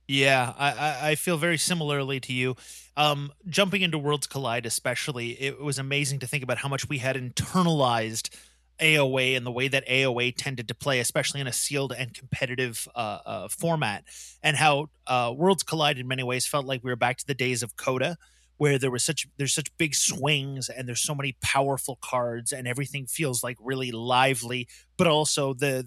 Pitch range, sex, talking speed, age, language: 125-150 Hz, male, 195 wpm, 30-49, English